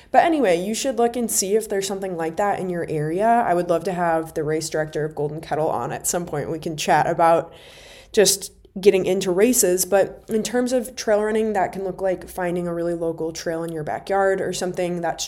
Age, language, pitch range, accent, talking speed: 20-39, English, 170-210 Hz, American, 230 wpm